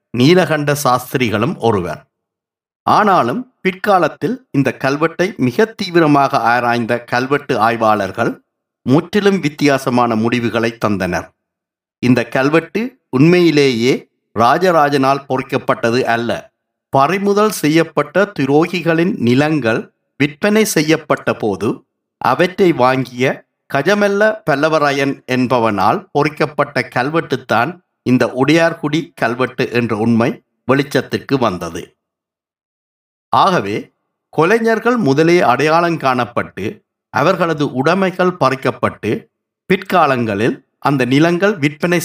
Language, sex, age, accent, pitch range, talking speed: Tamil, male, 50-69, native, 125-165 Hz, 80 wpm